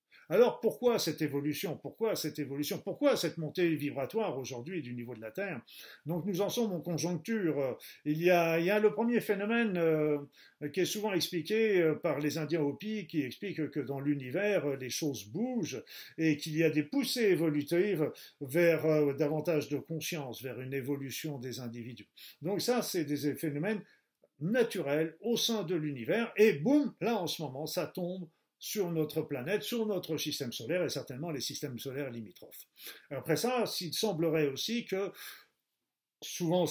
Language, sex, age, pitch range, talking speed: French, male, 50-69, 145-190 Hz, 165 wpm